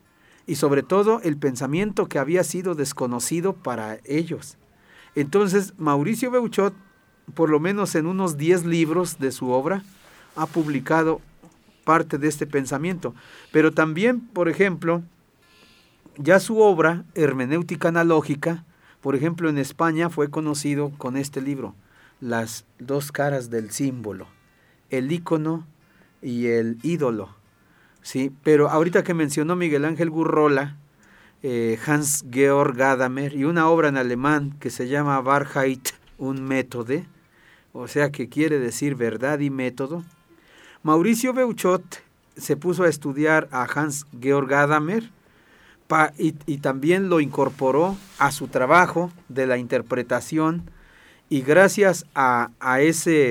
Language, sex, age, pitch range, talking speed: Spanish, male, 50-69, 135-170 Hz, 125 wpm